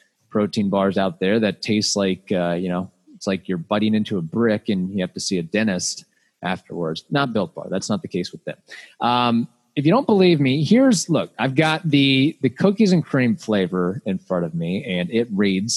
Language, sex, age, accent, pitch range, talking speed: English, male, 30-49, American, 105-155 Hz, 215 wpm